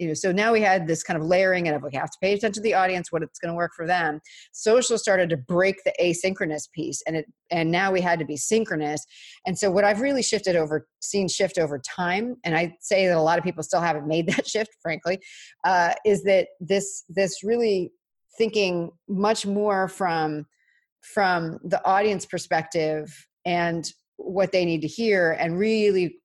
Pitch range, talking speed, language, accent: 160-200 Hz, 205 wpm, English, American